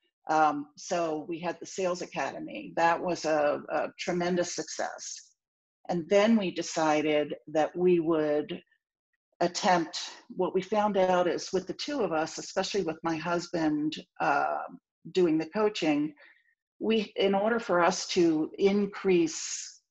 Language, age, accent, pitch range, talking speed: English, 50-69, American, 155-200 Hz, 140 wpm